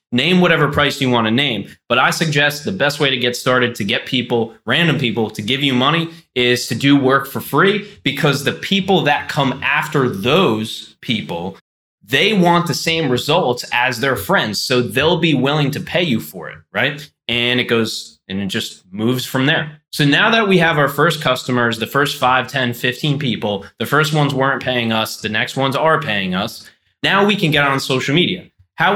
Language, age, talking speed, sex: English, 20-39, 205 wpm, male